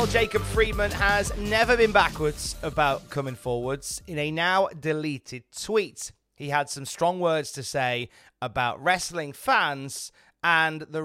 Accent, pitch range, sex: British, 120-165 Hz, male